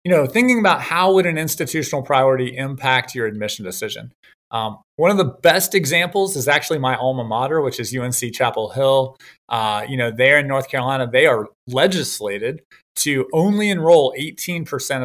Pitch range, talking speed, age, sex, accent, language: 130-175 Hz, 175 wpm, 30-49, male, American, English